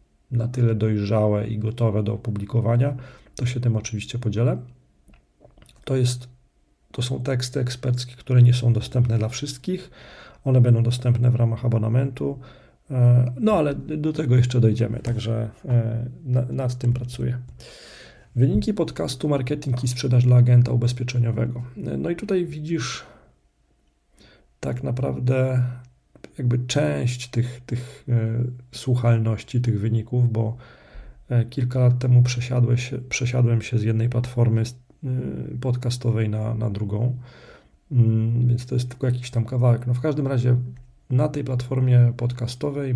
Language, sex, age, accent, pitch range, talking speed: Polish, male, 40-59, native, 115-130 Hz, 125 wpm